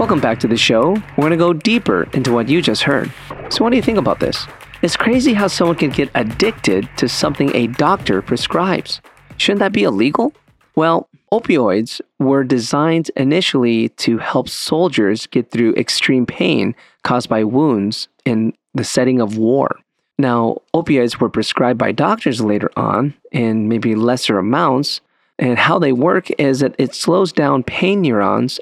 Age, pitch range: 40-59, 115-145 Hz